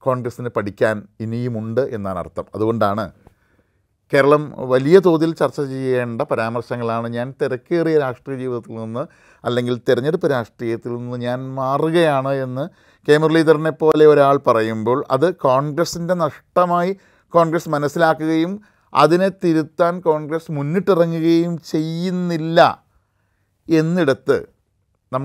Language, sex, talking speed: Malayalam, male, 95 wpm